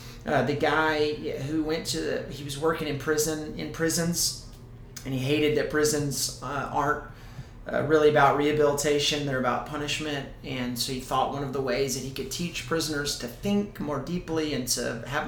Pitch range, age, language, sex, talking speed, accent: 130-155 Hz, 30-49, English, male, 190 wpm, American